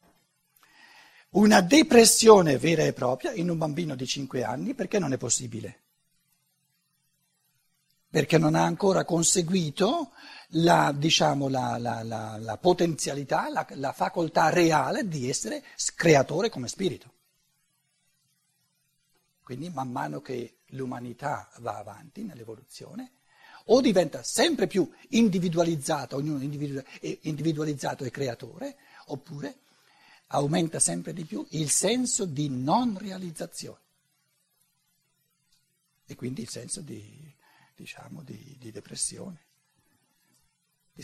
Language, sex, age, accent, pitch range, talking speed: Italian, male, 60-79, native, 140-170 Hz, 105 wpm